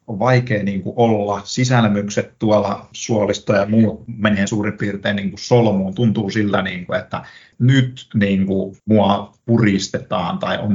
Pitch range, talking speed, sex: 100-120 Hz, 145 wpm, male